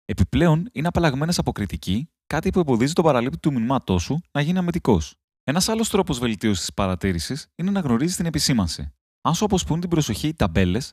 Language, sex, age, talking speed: Greek, male, 30-49, 185 wpm